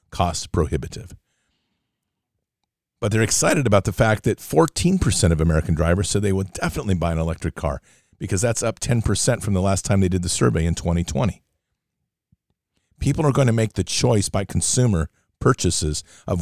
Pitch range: 90-110 Hz